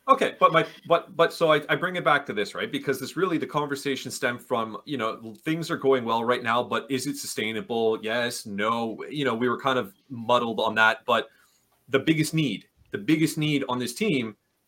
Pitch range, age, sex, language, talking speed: 115-145 Hz, 30-49, male, English, 220 wpm